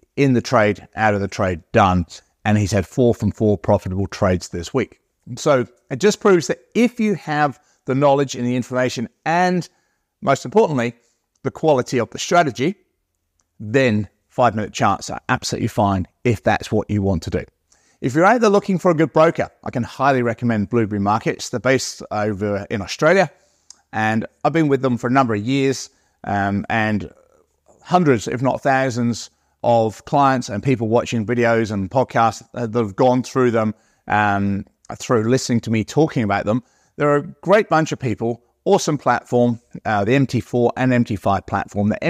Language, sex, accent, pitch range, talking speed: English, male, British, 105-140 Hz, 175 wpm